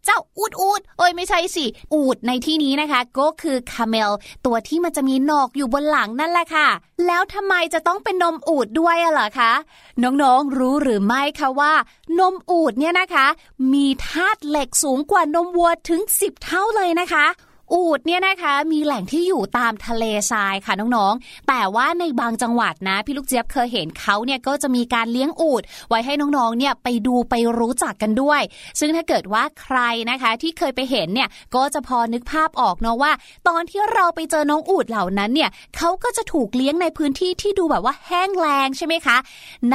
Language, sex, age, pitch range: Thai, female, 20-39, 255-340 Hz